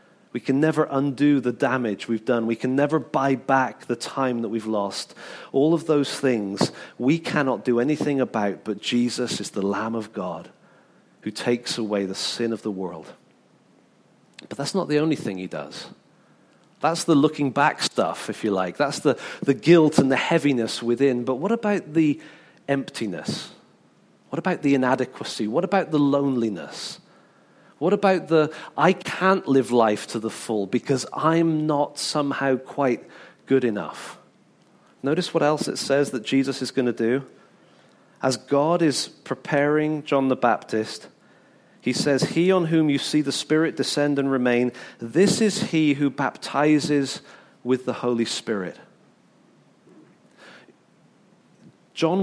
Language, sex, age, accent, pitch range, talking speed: English, male, 40-59, British, 120-155 Hz, 155 wpm